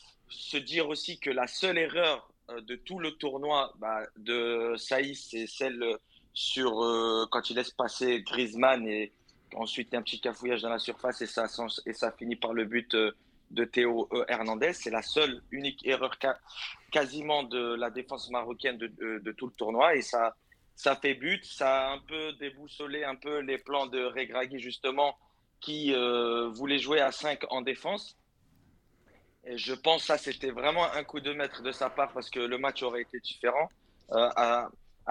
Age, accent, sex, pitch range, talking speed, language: 30-49, French, male, 120-140 Hz, 185 wpm, French